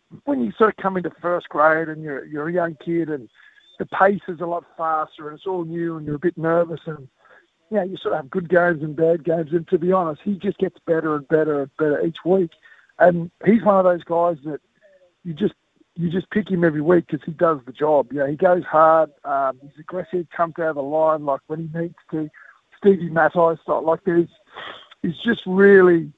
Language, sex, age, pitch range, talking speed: English, male, 50-69, 160-190 Hz, 240 wpm